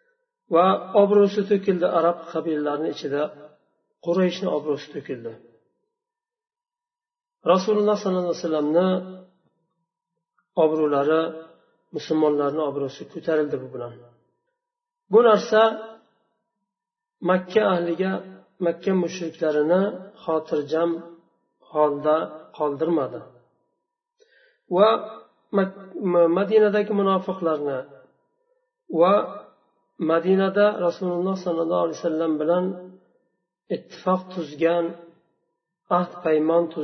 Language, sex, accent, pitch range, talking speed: Russian, male, Turkish, 165-215 Hz, 70 wpm